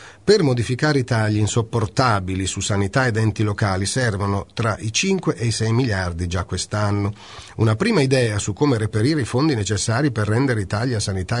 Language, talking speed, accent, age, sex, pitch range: Italian, 175 wpm, native, 40-59, male, 95-125 Hz